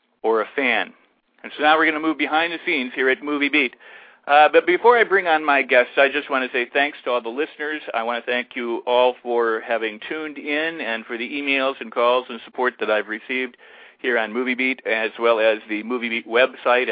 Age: 50-69